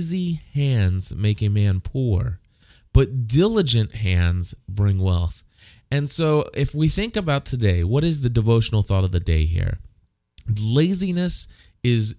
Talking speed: 135 wpm